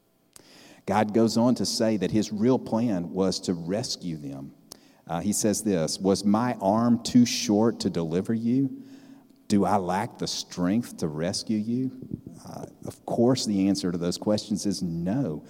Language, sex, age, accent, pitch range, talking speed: English, male, 50-69, American, 95-110 Hz, 165 wpm